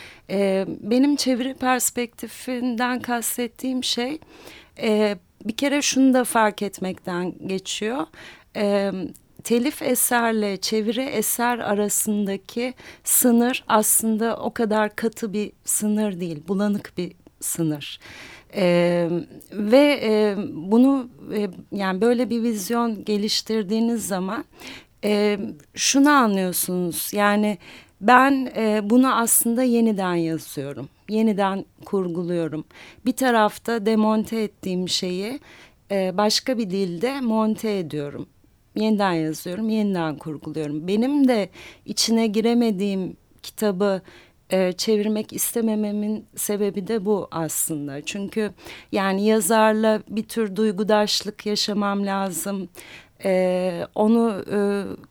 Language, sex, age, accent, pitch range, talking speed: Turkish, female, 40-59, native, 195-235 Hz, 95 wpm